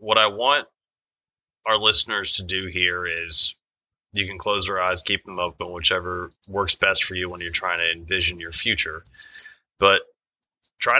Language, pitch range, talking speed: English, 90-100 Hz, 170 wpm